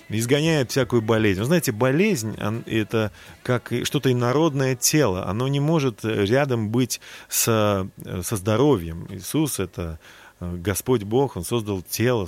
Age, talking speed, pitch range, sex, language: 30-49, 125 wpm, 100-125 Hz, male, Russian